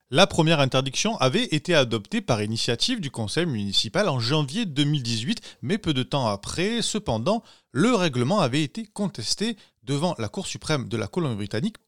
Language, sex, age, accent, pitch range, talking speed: French, male, 30-49, French, 120-180 Hz, 160 wpm